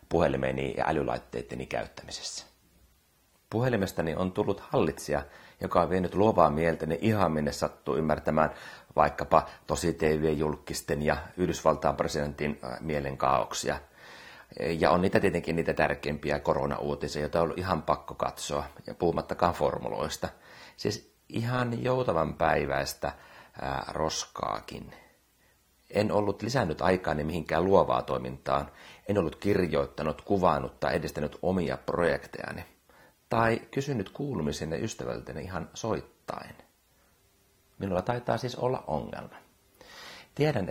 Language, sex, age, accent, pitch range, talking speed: Finnish, male, 30-49, native, 75-100 Hz, 105 wpm